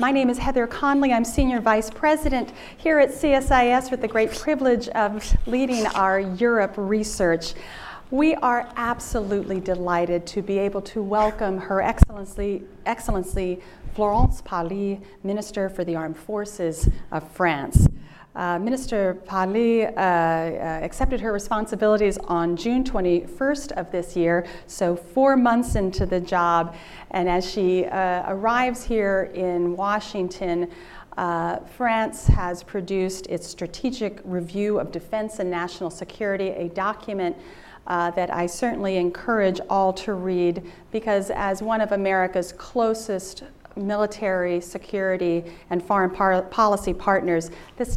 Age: 40-59